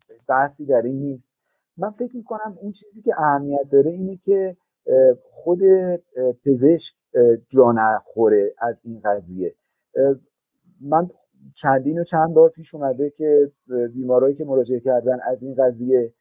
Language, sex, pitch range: Persian, male, 125-170 Hz